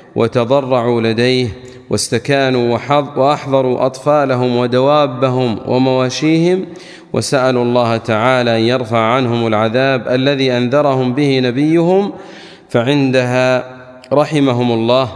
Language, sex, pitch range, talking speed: Arabic, male, 120-150 Hz, 85 wpm